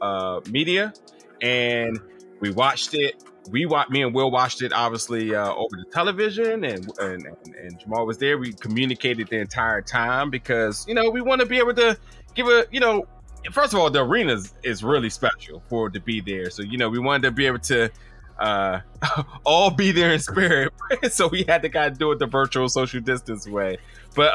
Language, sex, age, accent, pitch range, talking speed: English, male, 20-39, American, 105-145 Hz, 205 wpm